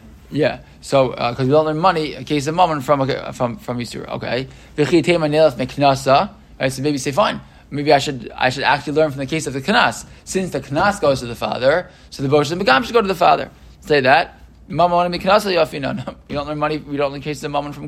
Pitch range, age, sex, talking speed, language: 130-155 Hz, 20-39, male, 235 wpm, English